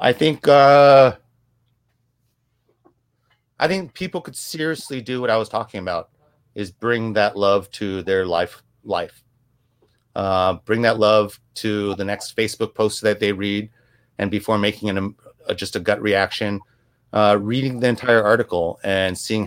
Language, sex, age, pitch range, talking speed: English, male, 30-49, 100-120 Hz, 155 wpm